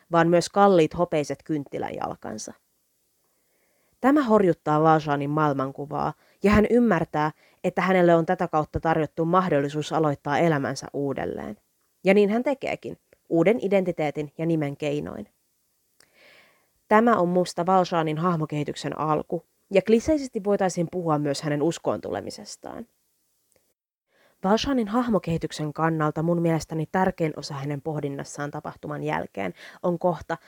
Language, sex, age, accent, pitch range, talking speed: Finnish, female, 30-49, native, 150-190 Hz, 115 wpm